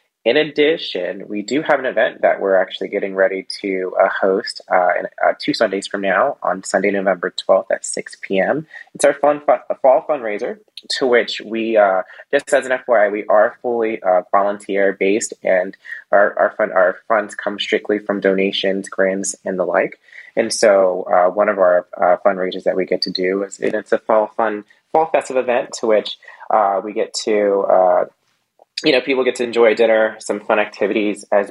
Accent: American